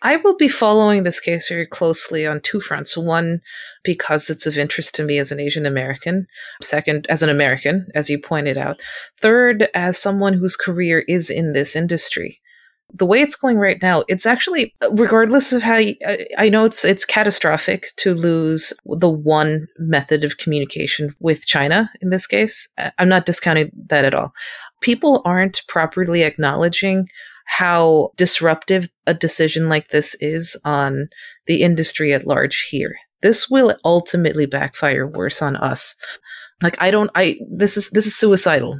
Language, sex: English, female